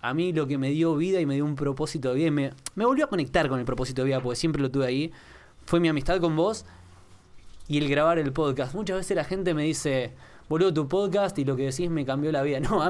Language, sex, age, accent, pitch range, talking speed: Spanish, male, 20-39, Argentinian, 135-165 Hz, 270 wpm